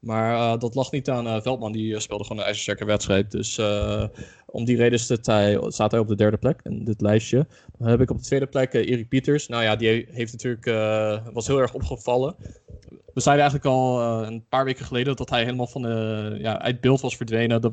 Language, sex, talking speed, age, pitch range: Dutch, male, 235 wpm, 20-39, 110-130 Hz